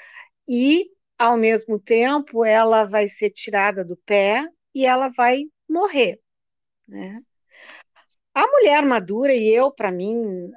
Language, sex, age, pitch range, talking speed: Portuguese, female, 50-69, 195-270 Hz, 125 wpm